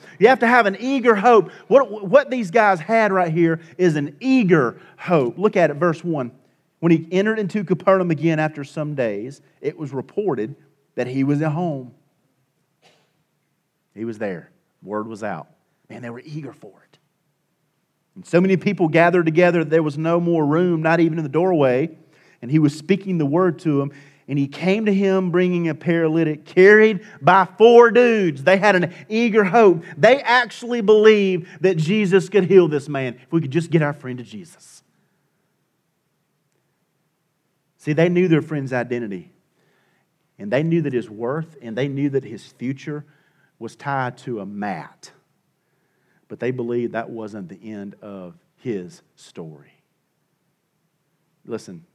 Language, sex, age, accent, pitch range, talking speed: English, male, 40-59, American, 140-185 Hz, 170 wpm